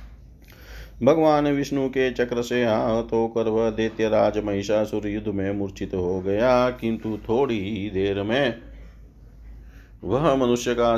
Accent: native